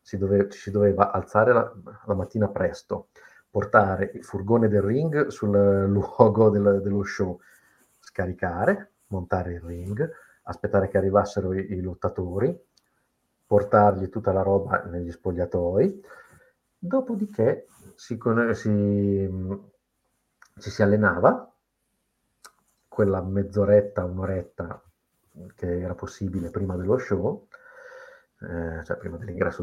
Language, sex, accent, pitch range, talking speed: Italian, male, native, 95-120 Hz, 115 wpm